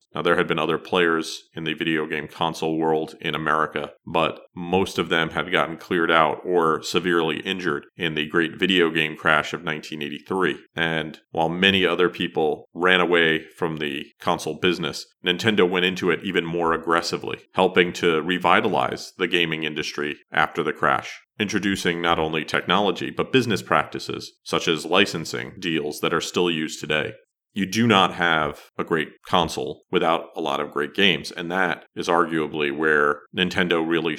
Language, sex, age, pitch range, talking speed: English, male, 40-59, 80-90 Hz, 170 wpm